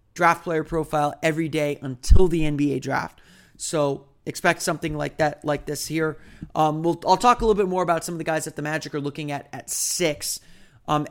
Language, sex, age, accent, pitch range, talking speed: English, male, 30-49, American, 145-175 Hz, 210 wpm